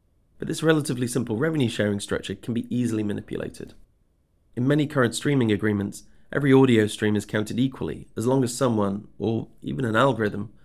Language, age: English, 30-49